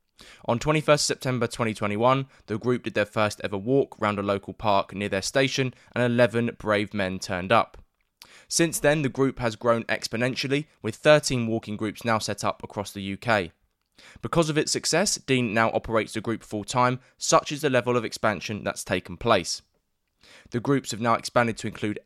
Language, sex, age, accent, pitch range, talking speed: English, male, 20-39, British, 105-130 Hz, 180 wpm